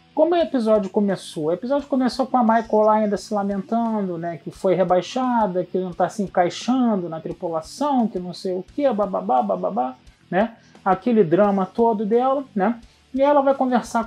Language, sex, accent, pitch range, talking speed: Portuguese, male, Brazilian, 180-230 Hz, 180 wpm